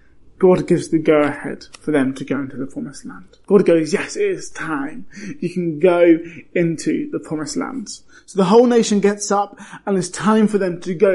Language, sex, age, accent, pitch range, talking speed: English, male, 20-39, British, 170-205 Hz, 205 wpm